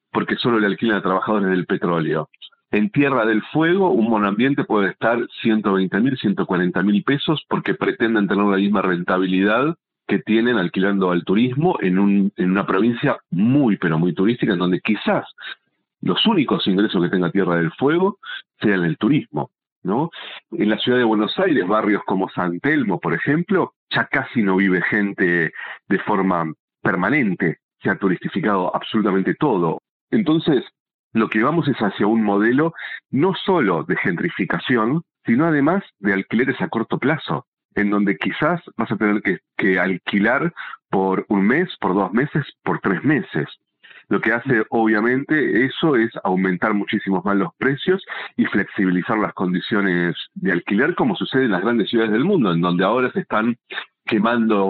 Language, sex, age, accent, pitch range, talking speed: Spanish, male, 40-59, Argentinian, 95-120 Hz, 160 wpm